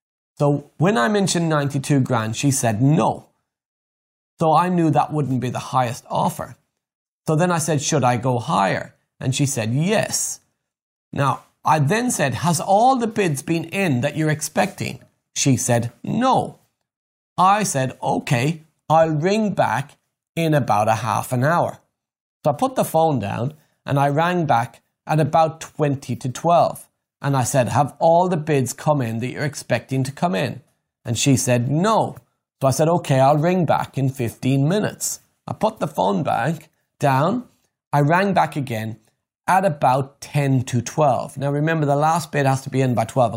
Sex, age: male, 30-49